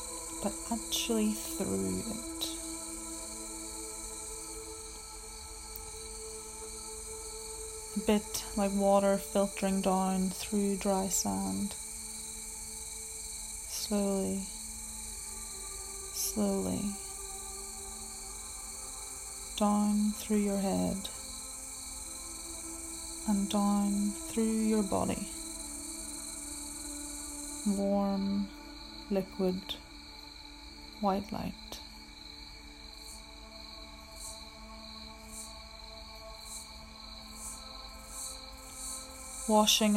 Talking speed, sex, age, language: 45 wpm, female, 30-49, English